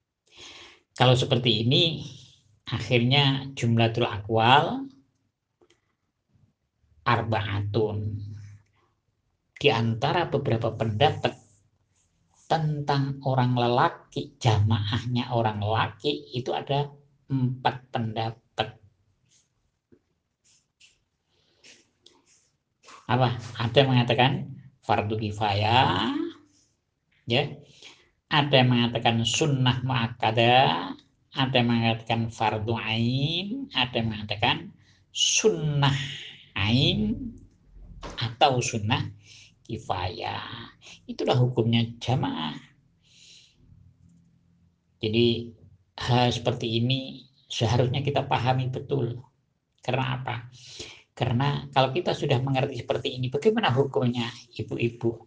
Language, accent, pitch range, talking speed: Indonesian, native, 110-135 Hz, 75 wpm